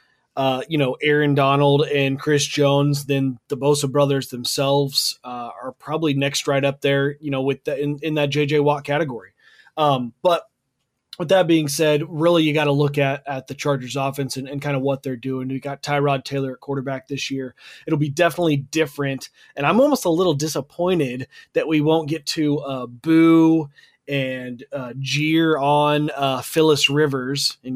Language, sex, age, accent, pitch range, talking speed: English, male, 30-49, American, 135-155 Hz, 190 wpm